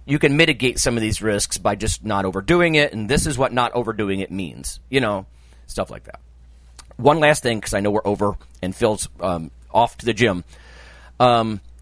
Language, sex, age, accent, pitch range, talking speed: English, male, 40-59, American, 85-140 Hz, 210 wpm